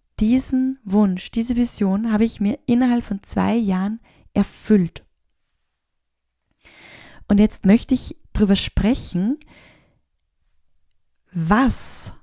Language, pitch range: German, 190-245 Hz